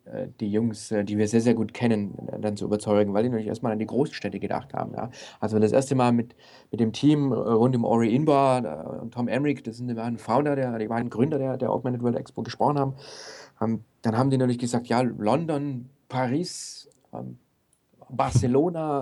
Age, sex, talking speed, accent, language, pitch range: 40-59, male, 190 wpm, German, German, 110-130 Hz